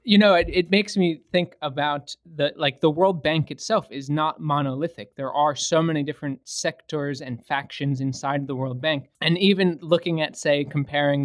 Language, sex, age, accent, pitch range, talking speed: English, male, 20-39, American, 135-170 Hz, 185 wpm